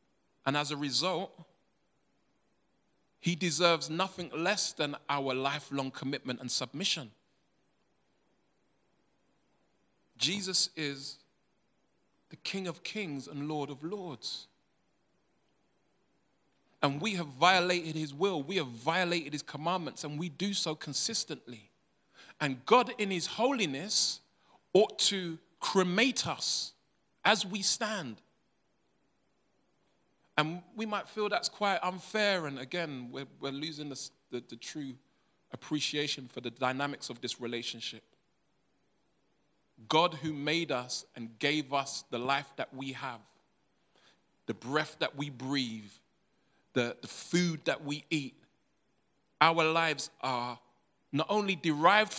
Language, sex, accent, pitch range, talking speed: English, male, British, 135-175 Hz, 120 wpm